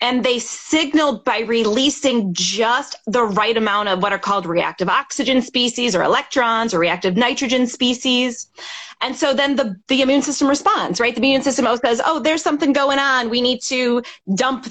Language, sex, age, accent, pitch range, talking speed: English, female, 30-49, American, 205-265 Hz, 185 wpm